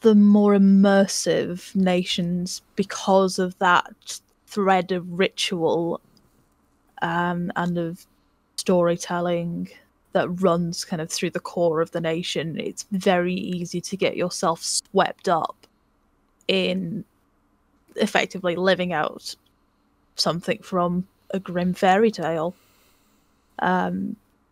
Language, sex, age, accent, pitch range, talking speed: English, female, 10-29, British, 175-195 Hz, 105 wpm